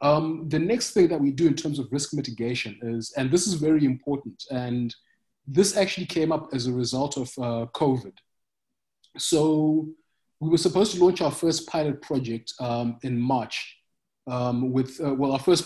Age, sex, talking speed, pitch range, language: 20-39, male, 185 wpm, 120-150 Hz, English